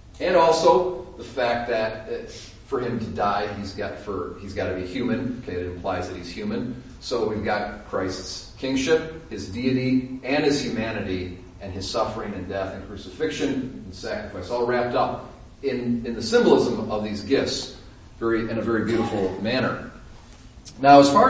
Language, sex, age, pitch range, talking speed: English, male, 40-59, 100-130 Hz, 170 wpm